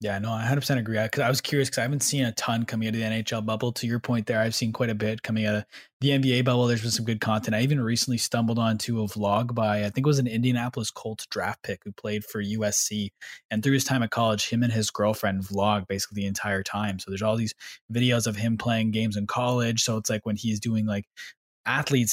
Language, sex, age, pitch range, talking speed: English, male, 20-39, 105-125 Hz, 260 wpm